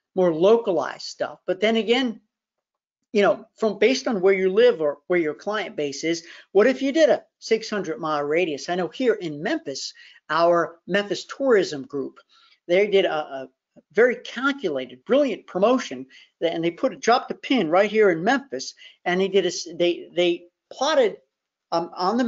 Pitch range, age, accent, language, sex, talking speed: 170-245 Hz, 50-69, American, English, male, 175 wpm